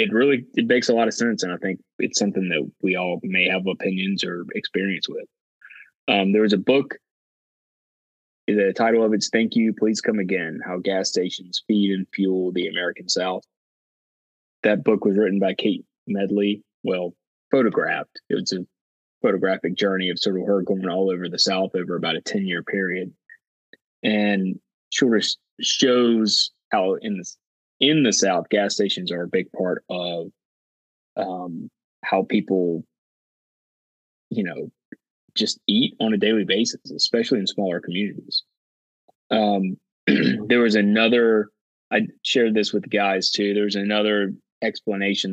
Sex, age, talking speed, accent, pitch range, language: male, 20-39, 155 wpm, American, 90-105 Hz, English